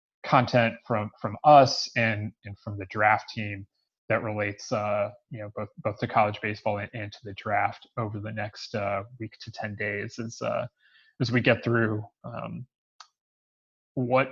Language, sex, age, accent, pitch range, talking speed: English, male, 30-49, American, 105-120 Hz, 170 wpm